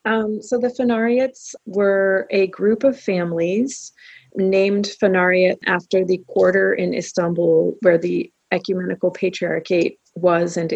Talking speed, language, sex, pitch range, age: 125 wpm, English, female, 175-205 Hz, 30-49